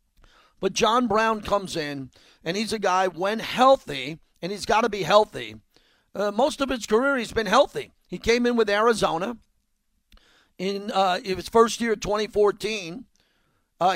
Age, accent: 50-69, American